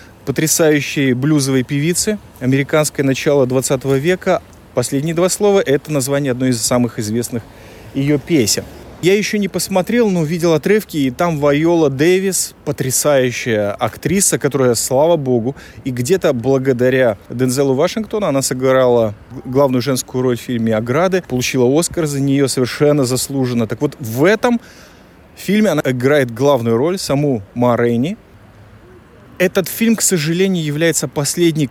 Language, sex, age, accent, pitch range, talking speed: Russian, male, 20-39, native, 125-165 Hz, 130 wpm